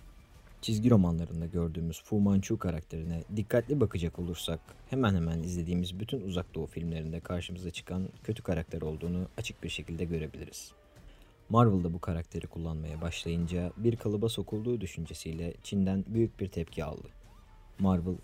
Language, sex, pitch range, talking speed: Turkish, male, 85-105 Hz, 130 wpm